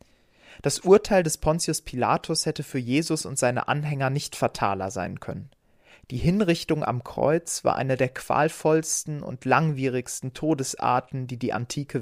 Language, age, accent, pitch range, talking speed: German, 30-49, German, 120-155 Hz, 145 wpm